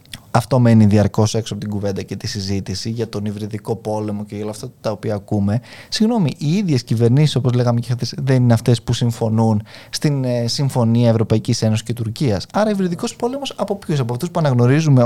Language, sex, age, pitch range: Greek, male, 20-39, 115-150 Hz